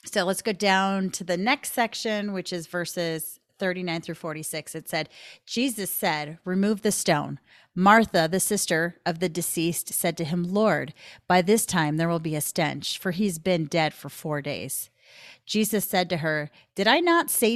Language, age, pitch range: English, 30-49, 160-200 Hz